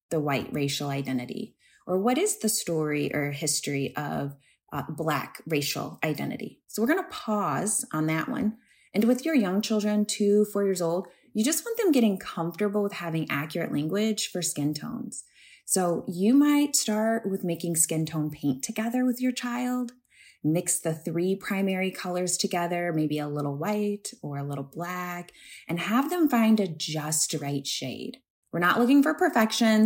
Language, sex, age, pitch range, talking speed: English, female, 20-39, 160-230 Hz, 170 wpm